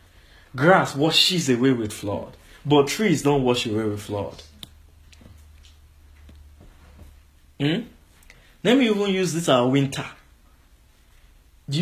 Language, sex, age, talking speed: English, male, 20-39, 105 wpm